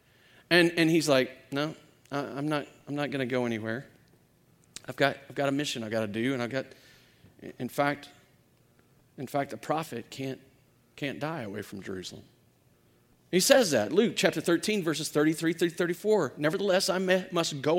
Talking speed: 190 wpm